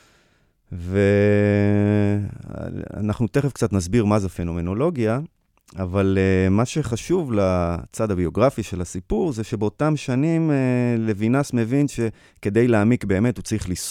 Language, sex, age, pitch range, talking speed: English, male, 30-49, 90-115 Hz, 75 wpm